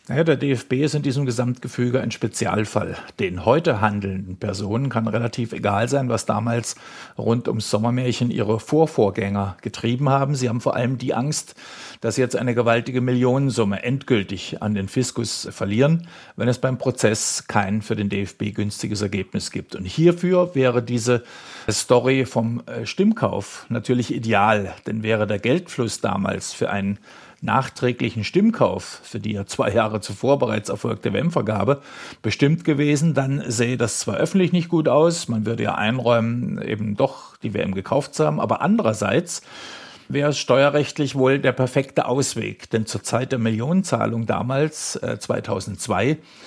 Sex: male